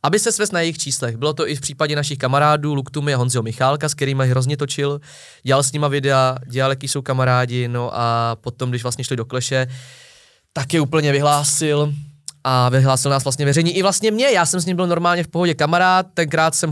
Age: 20-39